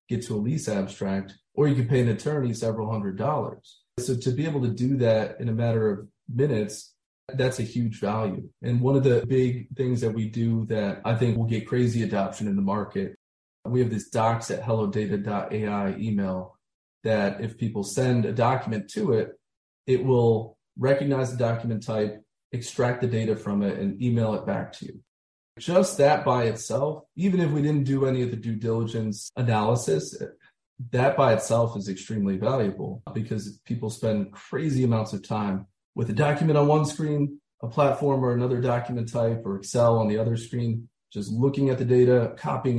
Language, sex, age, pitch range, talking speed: English, male, 30-49, 105-125 Hz, 185 wpm